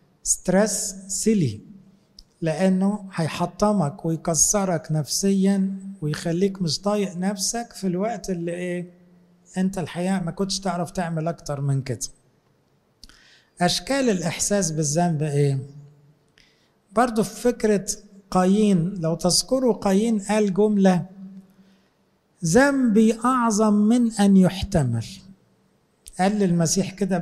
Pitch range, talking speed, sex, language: 165-200 Hz, 95 wpm, male, English